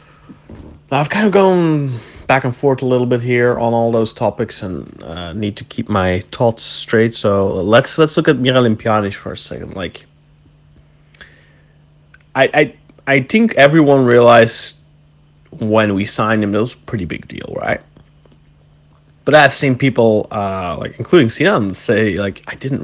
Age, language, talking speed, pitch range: 30-49, English, 165 wpm, 85-125 Hz